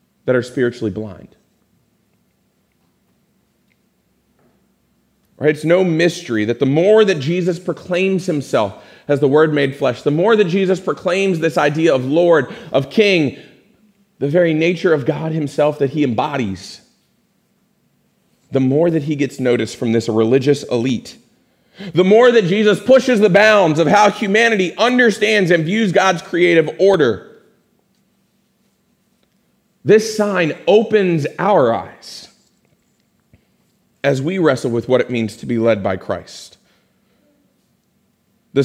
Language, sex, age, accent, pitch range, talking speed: English, male, 40-59, American, 135-195 Hz, 130 wpm